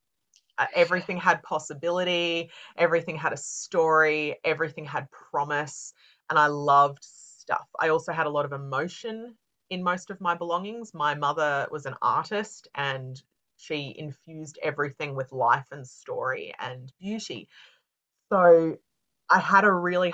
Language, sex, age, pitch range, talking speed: English, female, 30-49, 145-175 Hz, 135 wpm